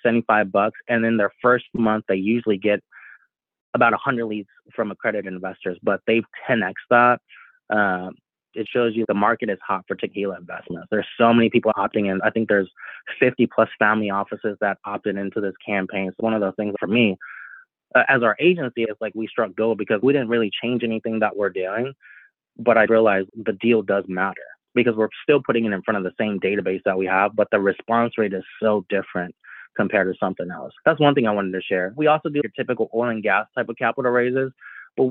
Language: English